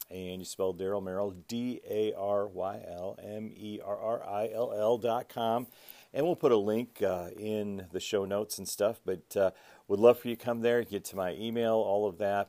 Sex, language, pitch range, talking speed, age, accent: male, English, 95-115 Hz, 170 wpm, 40-59, American